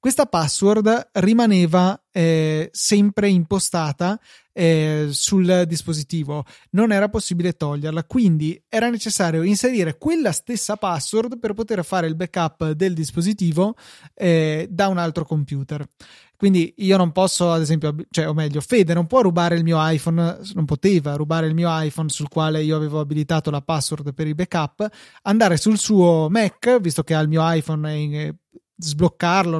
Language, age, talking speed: Italian, 20-39, 155 wpm